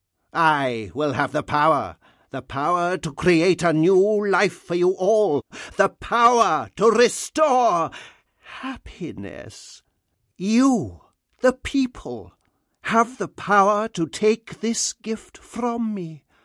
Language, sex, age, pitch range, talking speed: English, male, 50-69, 150-210 Hz, 115 wpm